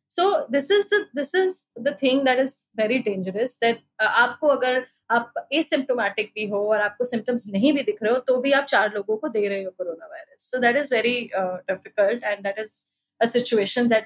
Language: Hindi